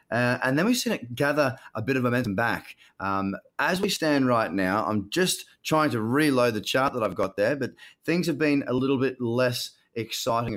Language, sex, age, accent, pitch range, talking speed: English, male, 30-49, Australian, 105-130 Hz, 215 wpm